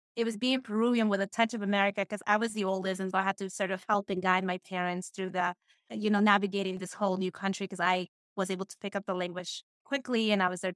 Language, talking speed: English, 275 wpm